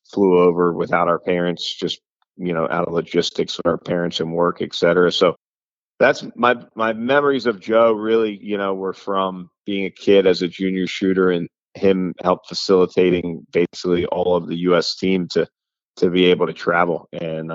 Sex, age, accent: male, 30-49, American